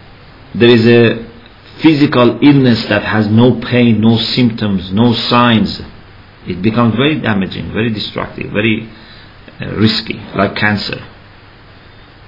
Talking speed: 110 wpm